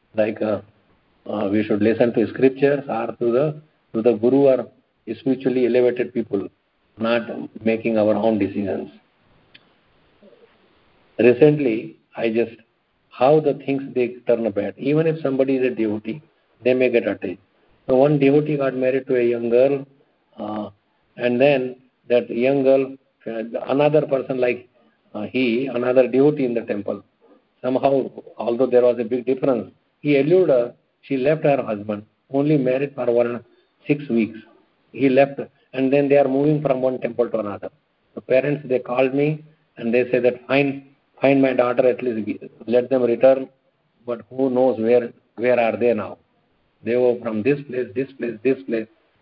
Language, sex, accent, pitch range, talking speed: English, male, Indian, 115-135 Hz, 165 wpm